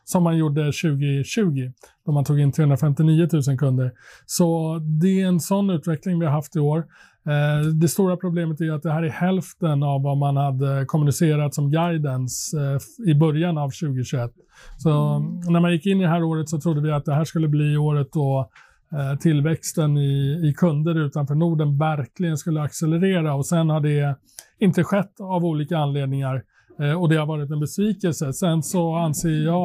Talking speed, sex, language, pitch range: 180 wpm, male, Swedish, 145-170 Hz